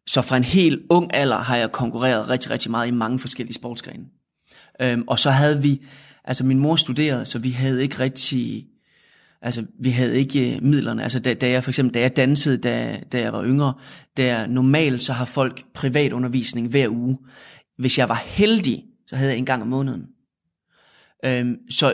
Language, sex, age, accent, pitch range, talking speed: Danish, male, 20-39, native, 125-145 Hz, 185 wpm